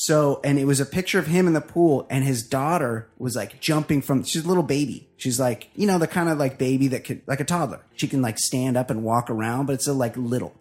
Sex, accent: male, American